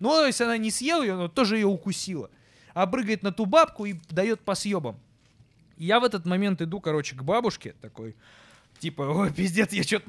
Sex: male